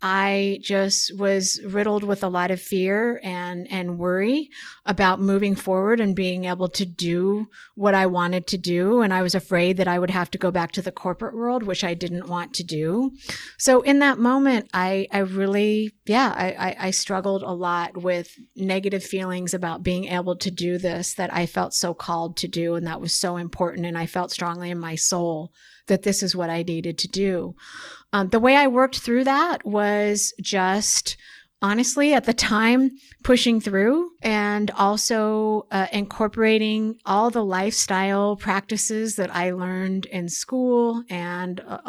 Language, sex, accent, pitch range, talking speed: English, female, American, 180-210 Hz, 180 wpm